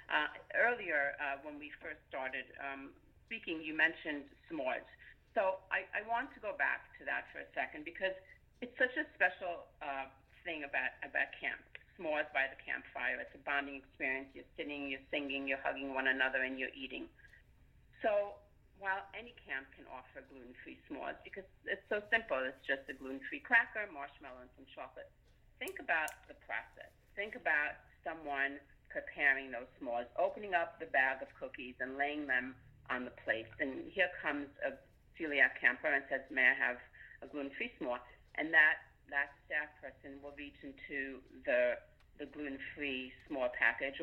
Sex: female